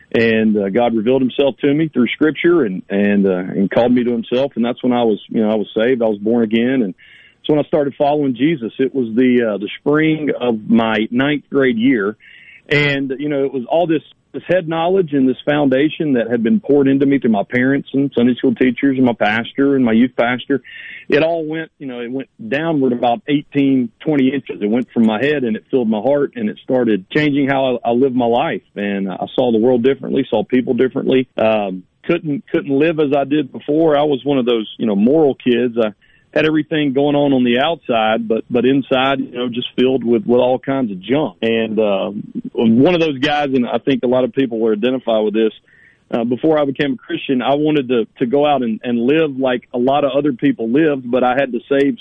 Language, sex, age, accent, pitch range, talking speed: English, male, 40-59, American, 120-145 Hz, 235 wpm